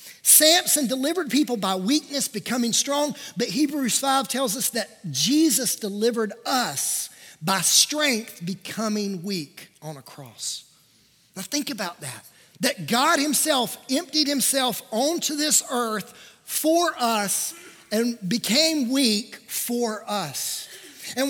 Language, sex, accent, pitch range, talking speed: English, male, American, 190-275 Hz, 120 wpm